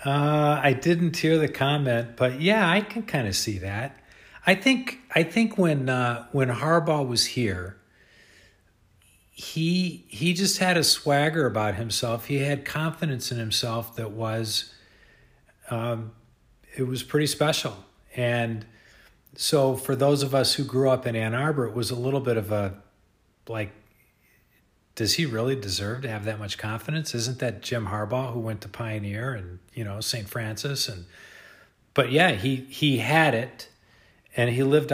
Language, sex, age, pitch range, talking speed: English, male, 50-69, 110-140 Hz, 165 wpm